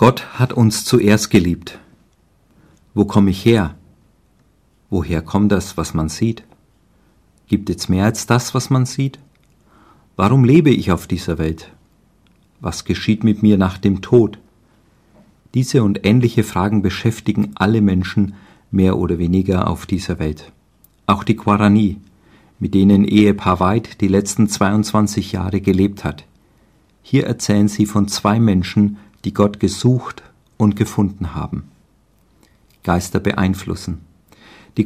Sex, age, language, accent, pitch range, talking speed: male, 50-69, German, German, 90-110 Hz, 130 wpm